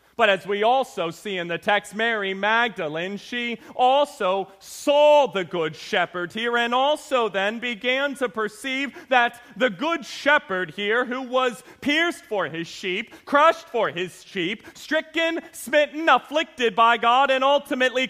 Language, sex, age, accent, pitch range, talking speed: English, male, 30-49, American, 235-300 Hz, 150 wpm